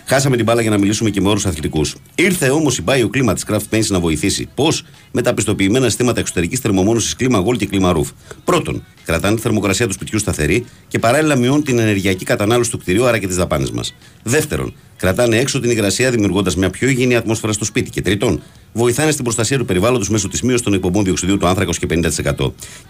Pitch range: 90-120 Hz